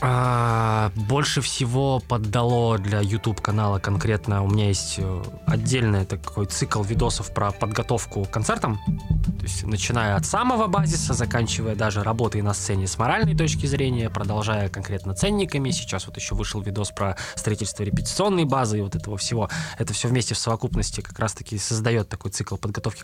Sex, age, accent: male, 20-39, native